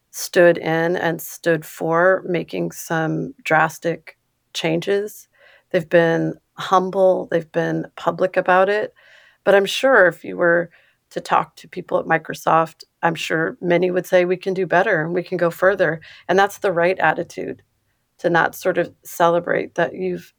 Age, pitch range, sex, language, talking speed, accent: 40-59, 170-190 Hz, female, English, 160 wpm, American